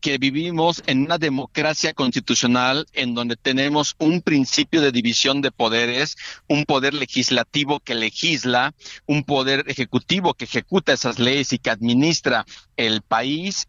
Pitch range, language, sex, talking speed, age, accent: 130-170 Hz, Spanish, male, 140 wpm, 50-69, Mexican